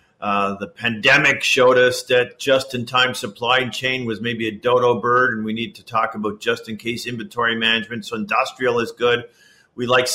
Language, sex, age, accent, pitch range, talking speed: English, male, 50-69, American, 115-135 Hz, 170 wpm